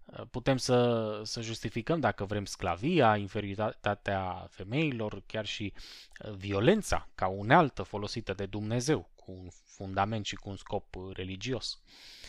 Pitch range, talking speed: 105-155 Hz, 120 wpm